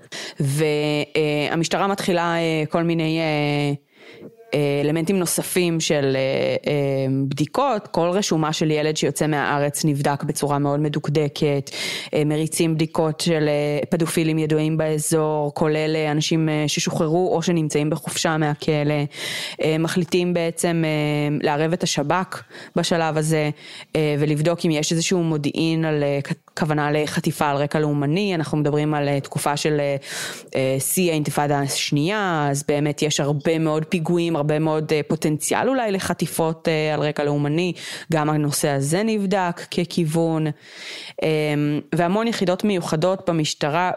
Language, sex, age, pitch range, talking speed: Hebrew, female, 20-39, 150-170 Hz, 115 wpm